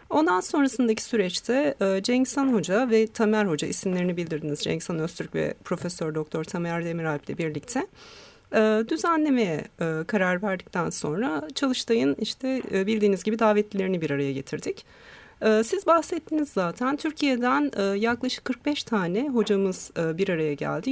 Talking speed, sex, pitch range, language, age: 120 wpm, female, 170-235 Hz, Turkish, 40-59